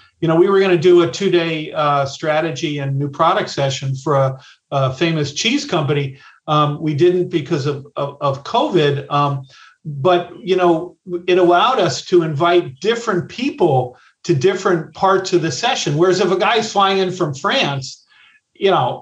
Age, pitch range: 50-69, 145-185 Hz